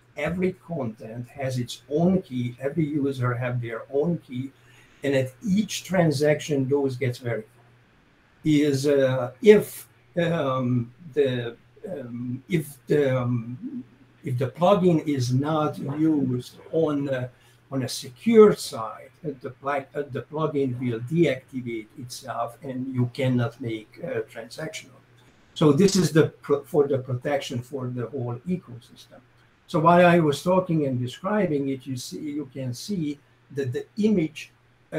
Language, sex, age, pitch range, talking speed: English, male, 60-79, 125-150 Hz, 140 wpm